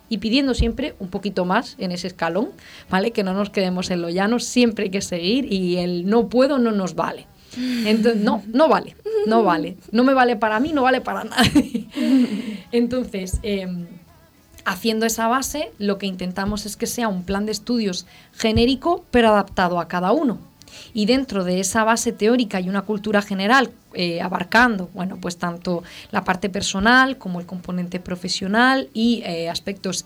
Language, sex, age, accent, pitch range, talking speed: Spanish, female, 20-39, Spanish, 185-235 Hz, 180 wpm